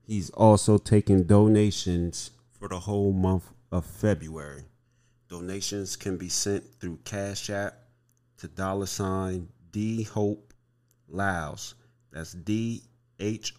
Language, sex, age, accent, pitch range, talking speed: English, male, 30-49, American, 90-105 Hz, 115 wpm